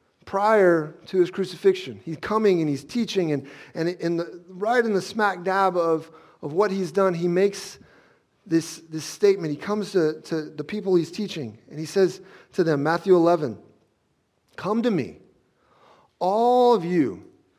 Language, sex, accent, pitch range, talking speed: English, male, American, 155-210 Hz, 165 wpm